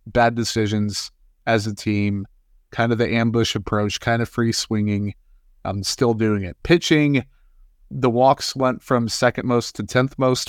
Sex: male